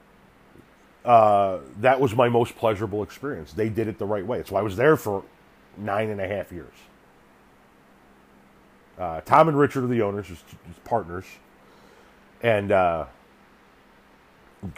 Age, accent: 40-59, American